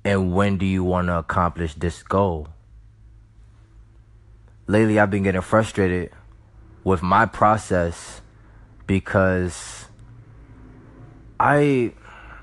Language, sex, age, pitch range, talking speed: English, male, 20-39, 85-105 Hz, 90 wpm